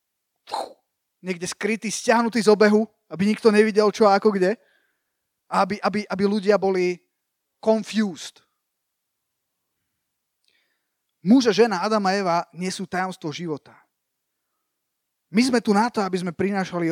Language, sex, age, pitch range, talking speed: Slovak, male, 20-39, 185-220 Hz, 125 wpm